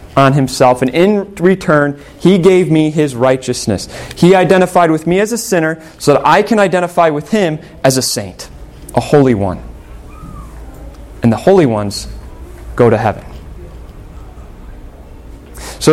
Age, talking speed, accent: 30-49, 145 wpm, American